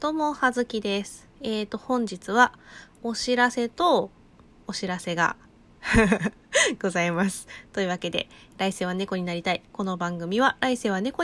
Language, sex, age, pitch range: Japanese, female, 20-39, 185-245 Hz